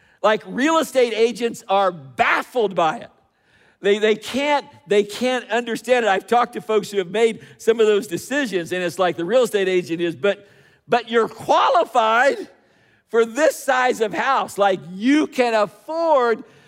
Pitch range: 185-245 Hz